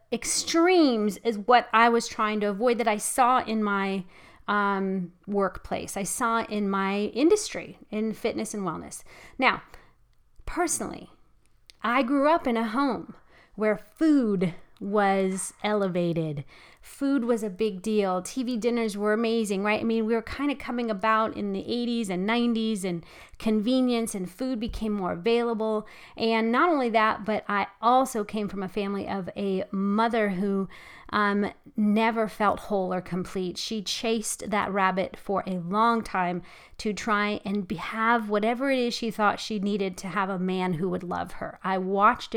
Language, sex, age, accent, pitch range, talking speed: English, female, 30-49, American, 195-240 Hz, 165 wpm